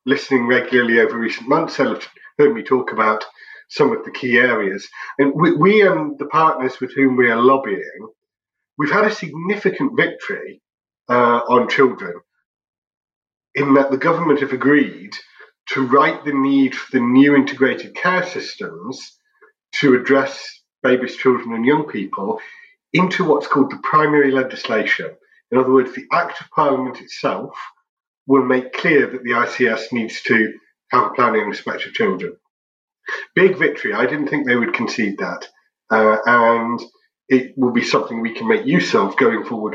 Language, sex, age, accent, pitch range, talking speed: English, male, 50-69, British, 125-160 Hz, 165 wpm